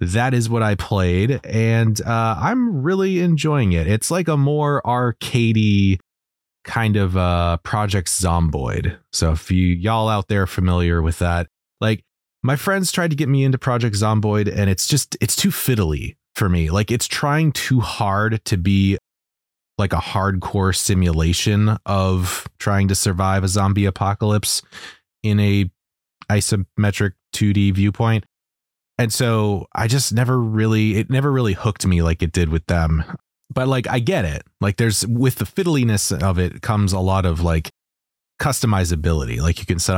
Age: 20-39